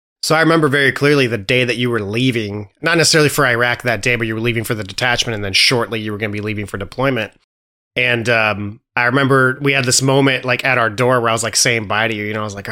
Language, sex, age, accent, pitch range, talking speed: English, male, 30-49, American, 110-130 Hz, 285 wpm